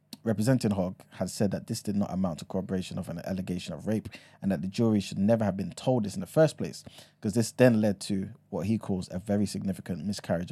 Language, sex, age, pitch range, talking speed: English, male, 20-39, 95-115 Hz, 240 wpm